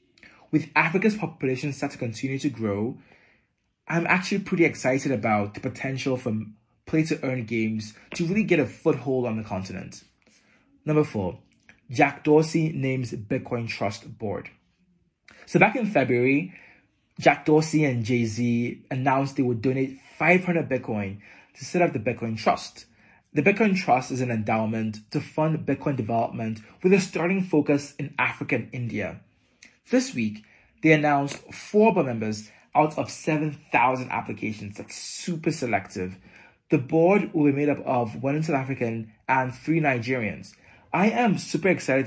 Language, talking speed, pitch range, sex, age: English, 150 wpm, 110-155 Hz, male, 20-39